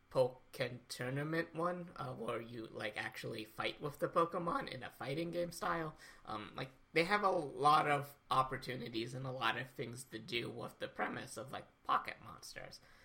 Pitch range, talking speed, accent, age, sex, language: 120-150 Hz, 180 wpm, American, 20-39, male, English